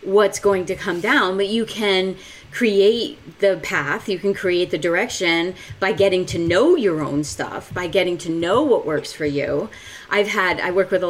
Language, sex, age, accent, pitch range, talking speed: English, female, 30-49, American, 165-205 Hz, 200 wpm